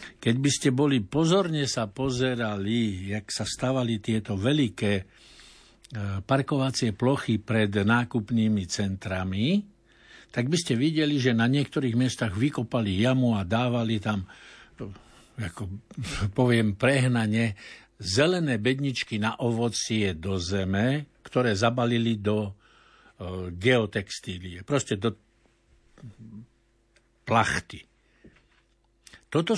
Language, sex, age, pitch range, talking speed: Slovak, male, 60-79, 105-140 Hz, 95 wpm